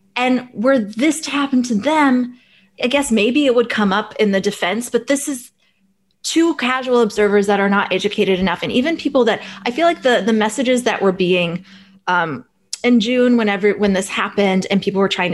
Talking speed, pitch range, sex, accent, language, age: 205 wpm, 185-245 Hz, female, American, English, 20-39